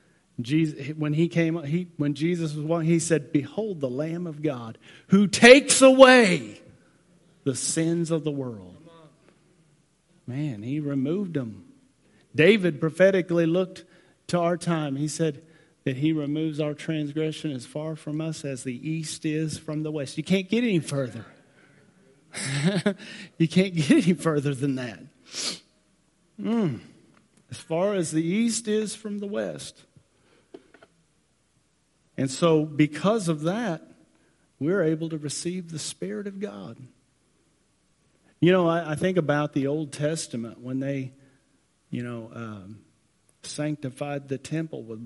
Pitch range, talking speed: 135-170 Hz, 135 wpm